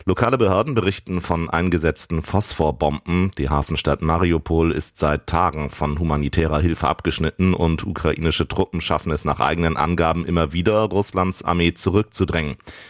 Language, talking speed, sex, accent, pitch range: German, 135 wpm, male, German, 75-95 Hz